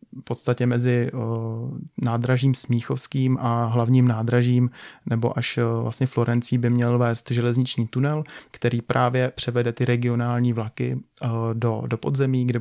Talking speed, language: 130 wpm, Czech